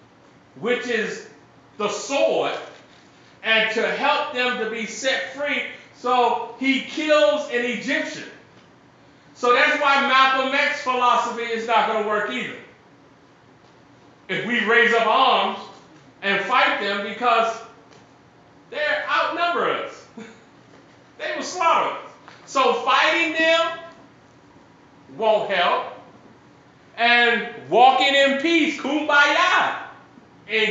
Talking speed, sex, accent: 110 wpm, male, American